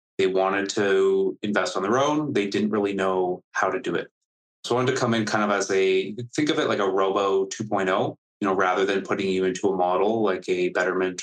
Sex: male